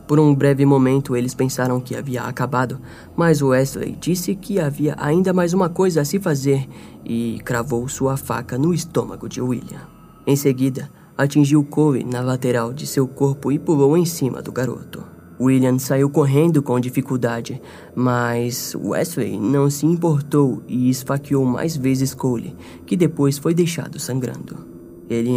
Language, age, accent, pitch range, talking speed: Portuguese, 20-39, Brazilian, 125-150 Hz, 155 wpm